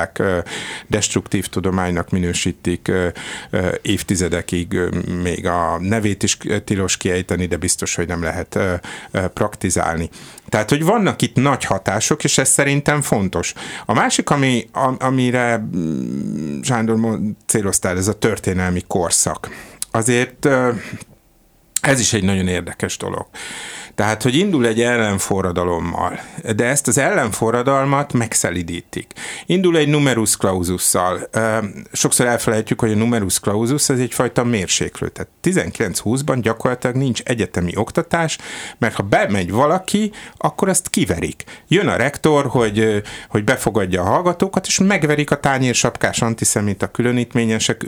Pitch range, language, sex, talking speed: 95-130 Hz, Hungarian, male, 120 wpm